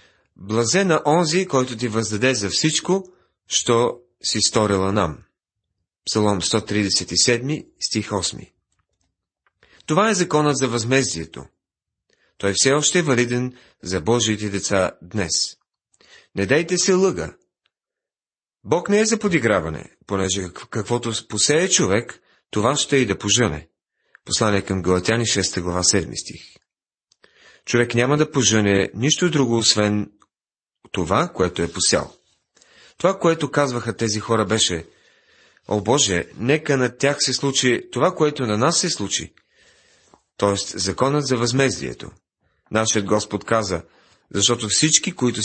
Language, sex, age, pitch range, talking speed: Bulgarian, male, 40-59, 100-135 Hz, 125 wpm